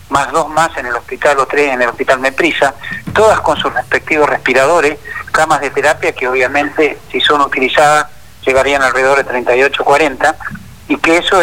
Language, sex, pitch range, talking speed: Spanish, male, 135-170 Hz, 175 wpm